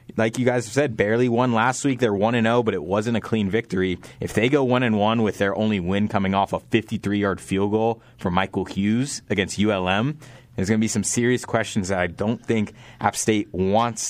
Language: English